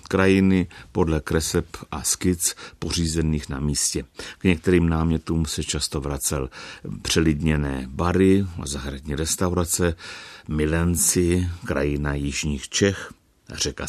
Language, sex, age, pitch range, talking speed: Czech, male, 60-79, 75-90 Hz, 100 wpm